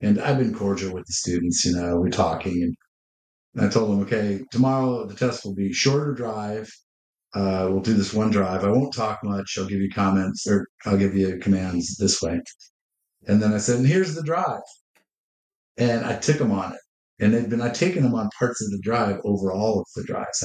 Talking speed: 210 wpm